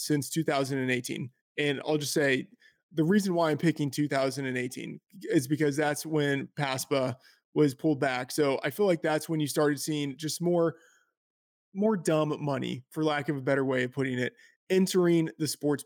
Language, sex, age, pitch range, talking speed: English, male, 20-39, 140-165 Hz, 175 wpm